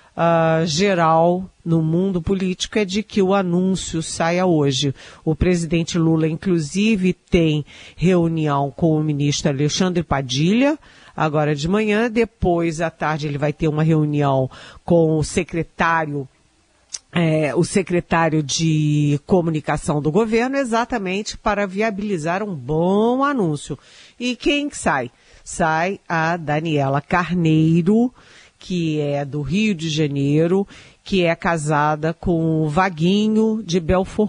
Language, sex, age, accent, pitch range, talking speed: Portuguese, female, 50-69, Brazilian, 155-195 Hz, 120 wpm